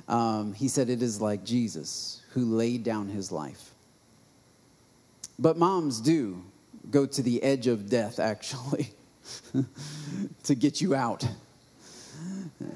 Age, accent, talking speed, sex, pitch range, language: 40-59, American, 120 wpm, male, 135-190 Hz, English